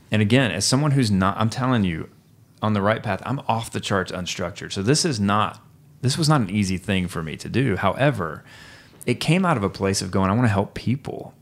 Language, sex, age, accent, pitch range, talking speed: English, male, 30-49, American, 95-120 Hz, 240 wpm